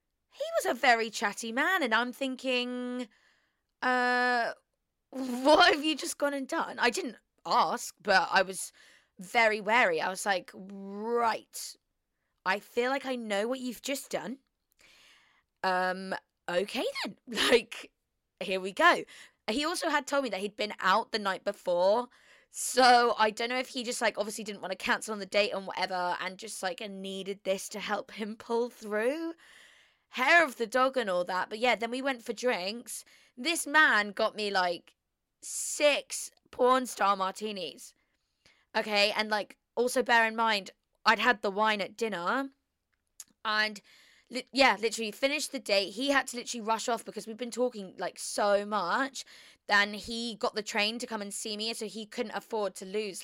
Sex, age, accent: female, 20-39, British